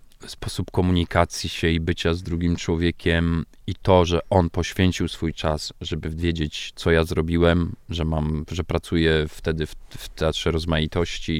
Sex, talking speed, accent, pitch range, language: male, 155 wpm, native, 85-100 Hz, Polish